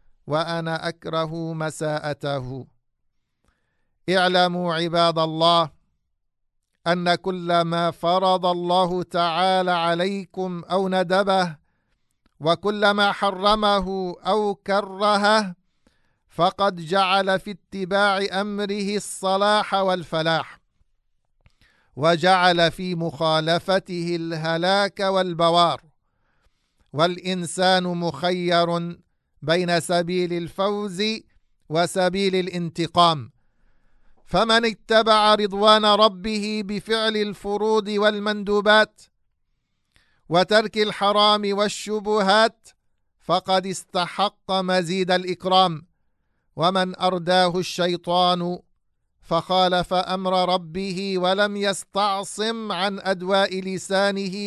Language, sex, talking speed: English, male, 70 wpm